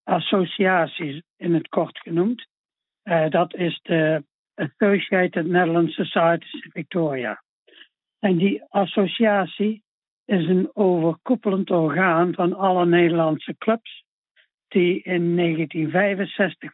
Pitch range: 165-195 Hz